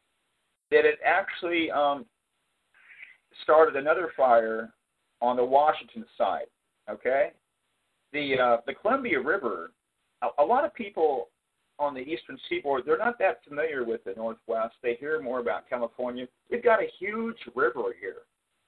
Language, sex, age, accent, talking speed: English, male, 50-69, American, 140 wpm